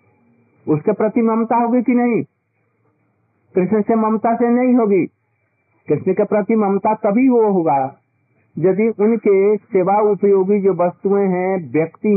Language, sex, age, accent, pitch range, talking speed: Hindi, male, 50-69, native, 145-215 Hz, 140 wpm